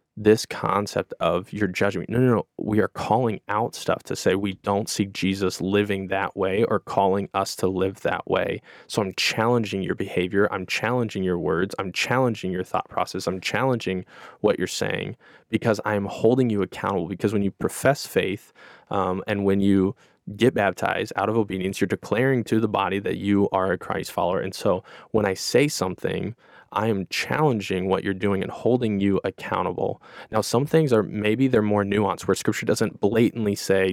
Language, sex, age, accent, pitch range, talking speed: English, male, 20-39, American, 95-110 Hz, 190 wpm